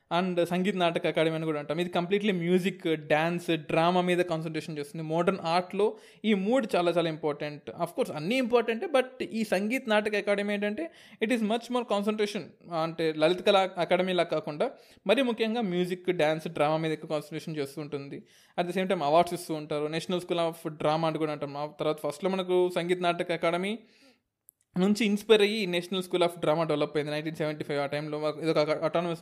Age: 20-39